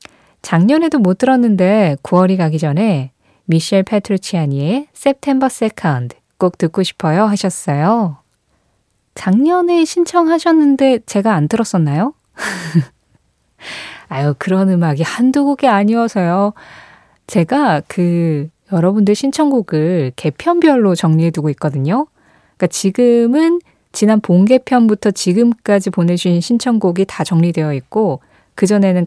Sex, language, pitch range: female, Korean, 165-235 Hz